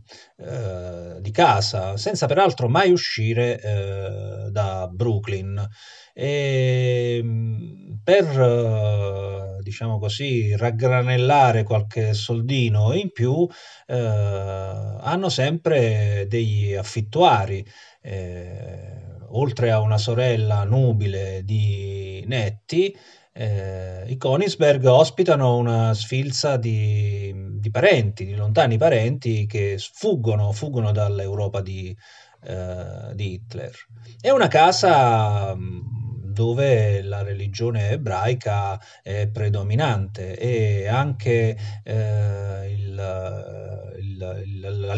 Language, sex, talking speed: Italian, male, 85 wpm